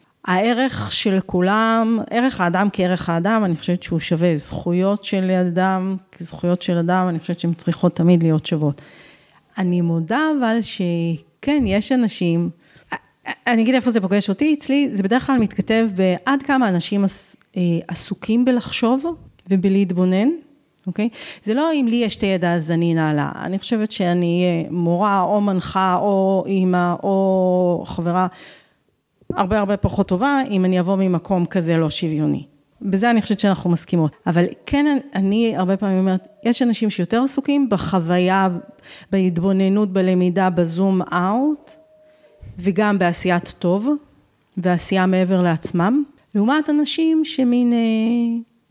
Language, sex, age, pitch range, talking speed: Hebrew, female, 30-49, 180-230 Hz, 135 wpm